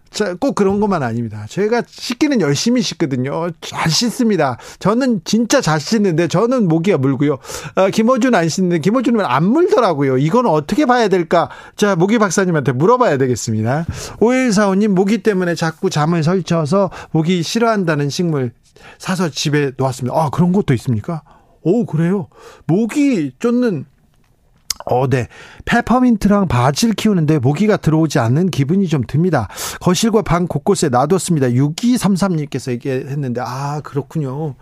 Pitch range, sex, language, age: 140-210 Hz, male, Korean, 40-59